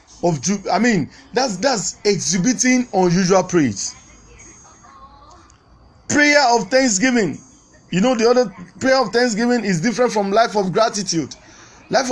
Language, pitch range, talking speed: English, 180-235 Hz, 120 wpm